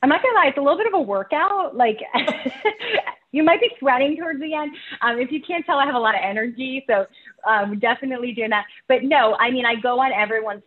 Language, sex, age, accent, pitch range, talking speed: English, female, 30-49, American, 200-265 Hz, 240 wpm